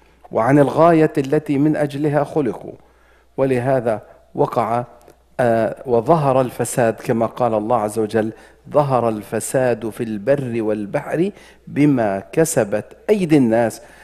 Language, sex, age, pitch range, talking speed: English, male, 50-69, 110-150 Hz, 105 wpm